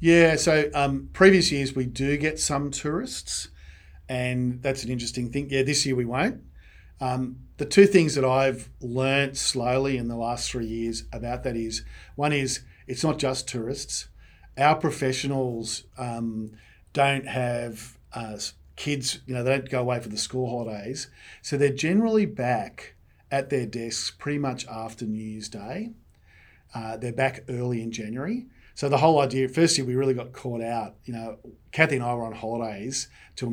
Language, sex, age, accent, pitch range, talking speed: English, male, 40-59, Australian, 115-140 Hz, 175 wpm